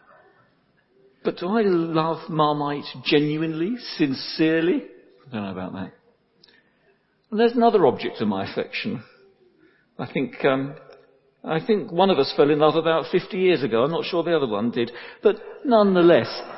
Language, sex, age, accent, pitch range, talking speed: English, male, 50-69, British, 135-220 Hz, 155 wpm